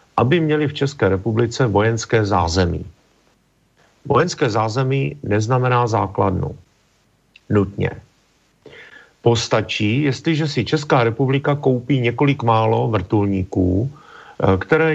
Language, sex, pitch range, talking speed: Slovak, male, 100-125 Hz, 90 wpm